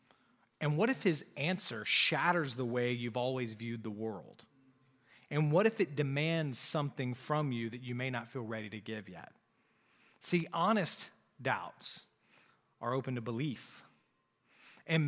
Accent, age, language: American, 30-49, English